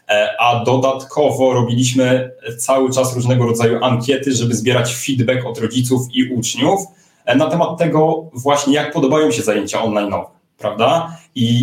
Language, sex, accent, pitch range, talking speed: Polish, male, native, 110-135 Hz, 130 wpm